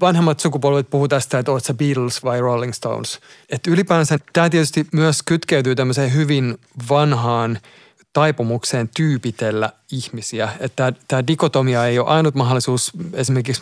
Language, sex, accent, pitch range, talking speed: Finnish, male, native, 120-145 Hz, 125 wpm